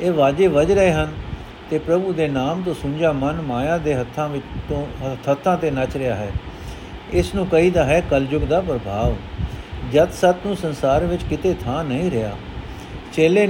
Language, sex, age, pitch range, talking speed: Punjabi, male, 60-79, 135-175 Hz, 175 wpm